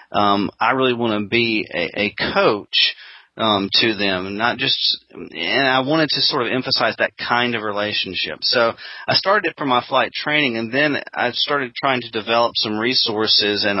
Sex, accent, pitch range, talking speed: male, American, 100-115 Hz, 185 wpm